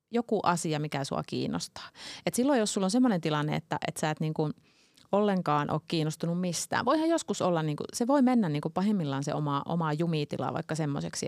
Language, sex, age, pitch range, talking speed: Finnish, female, 30-49, 155-200 Hz, 200 wpm